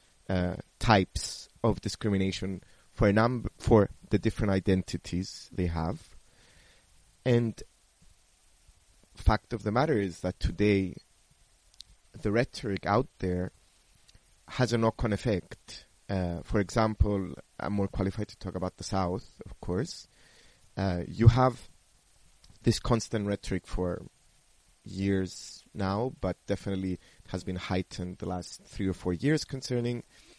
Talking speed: 125 wpm